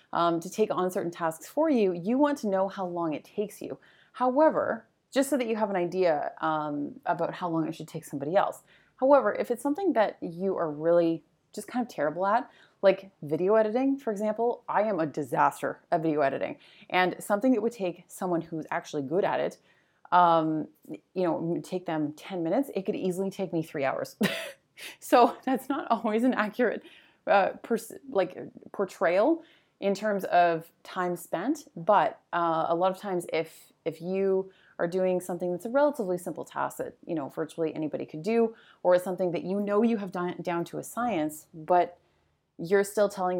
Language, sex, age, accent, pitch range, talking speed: English, female, 30-49, American, 165-215 Hz, 195 wpm